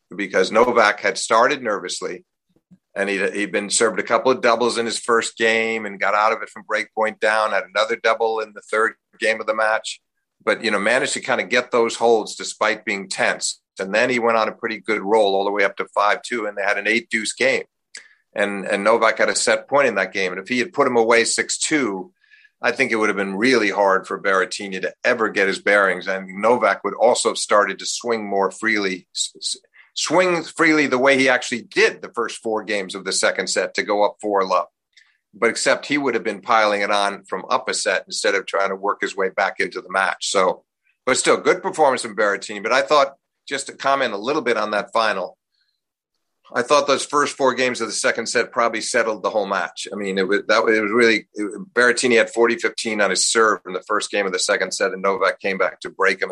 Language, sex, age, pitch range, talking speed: English, male, 50-69, 100-125 Hz, 240 wpm